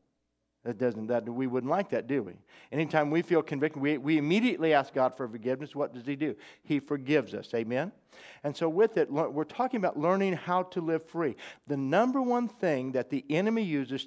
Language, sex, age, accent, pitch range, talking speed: English, male, 50-69, American, 140-195 Hz, 205 wpm